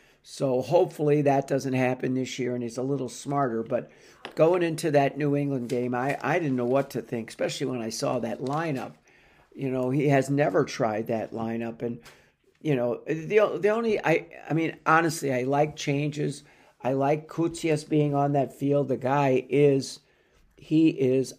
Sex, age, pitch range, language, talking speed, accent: male, 60-79, 125-150 Hz, English, 190 wpm, American